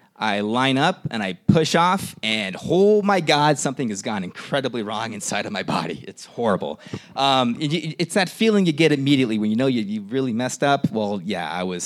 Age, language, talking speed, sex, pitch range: 30-49, English, 215 wpm, male, 105-155 Hz